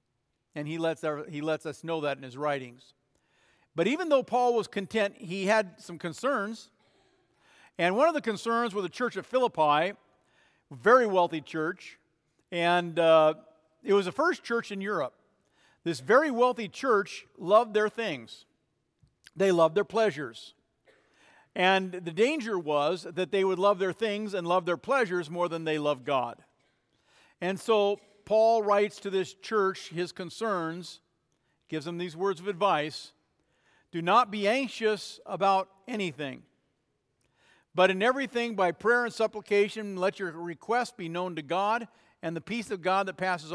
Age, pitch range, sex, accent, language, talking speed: 50-69, 165-215 Hz, male, American, English, 160 wpm